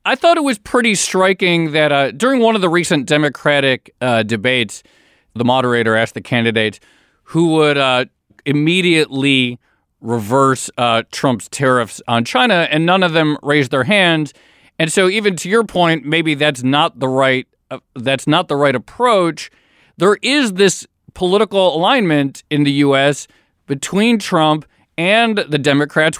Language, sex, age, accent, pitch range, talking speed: English, male, 40-59, American, 125-160 Hz, 155 wpm